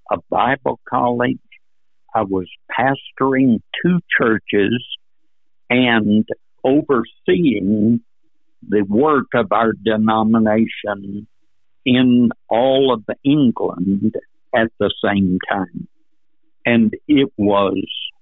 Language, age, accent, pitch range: English, 60-79, American, 100-130 Hz